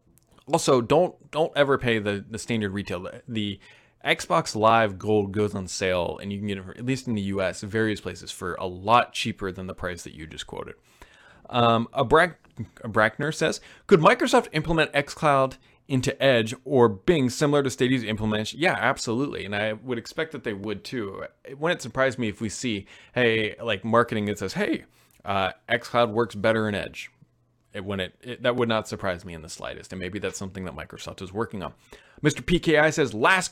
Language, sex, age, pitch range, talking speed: English, male, 20-39, 110-155 Hz, 195 wpm